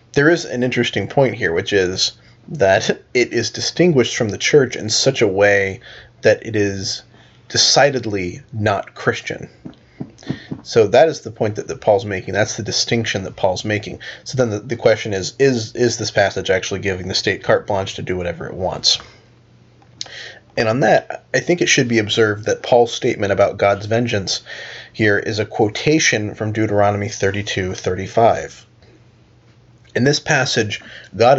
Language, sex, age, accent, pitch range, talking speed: English, male, 20-39, American, 100-125 Hz, 170 wpm